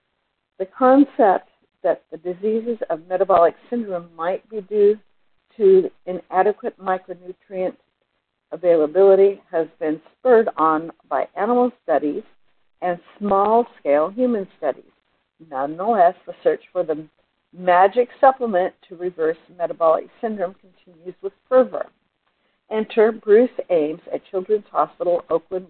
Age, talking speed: 60-79, 110 wpm